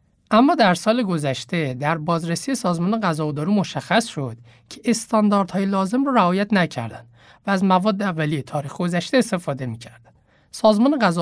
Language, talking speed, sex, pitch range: Persian, 140 wpm, male, 155-215 Hz